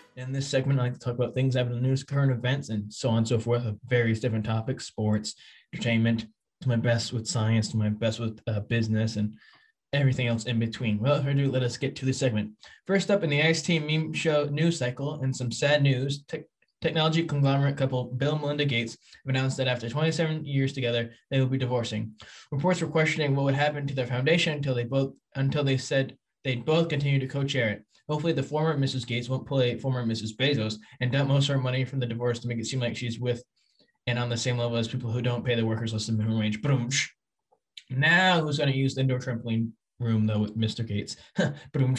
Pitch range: 115-145 Hz